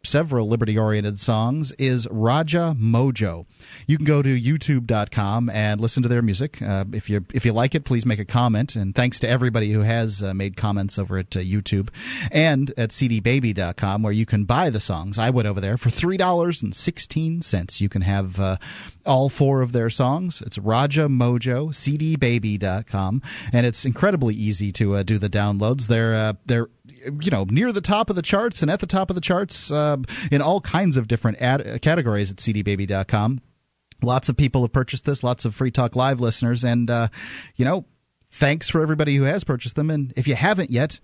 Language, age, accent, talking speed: English, 40-59, American, 200 wpm